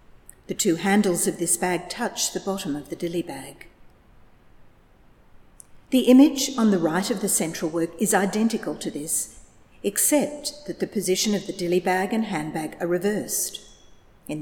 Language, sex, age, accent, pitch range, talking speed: English, female, 50-69, Australian, 165-210 Hz, 160 wpm